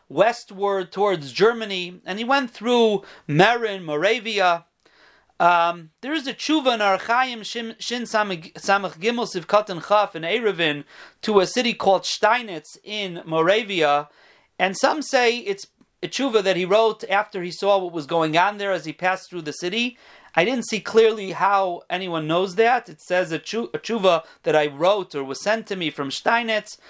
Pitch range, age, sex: 175-220 Hz, 40-59, male